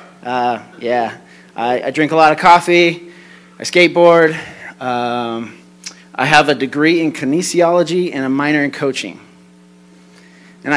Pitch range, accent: 105-150 Hz, American